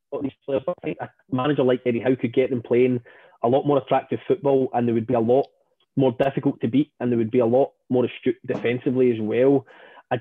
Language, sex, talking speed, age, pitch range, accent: English, male, 235 wpm, 20-39, 130-165 Hz, British